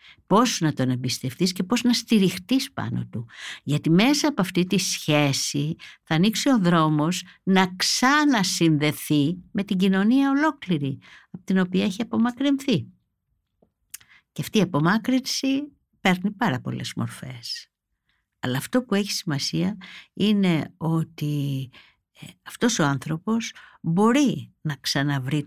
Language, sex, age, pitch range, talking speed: Greek, female, 60-79, 150-230 Hz, 125 wpm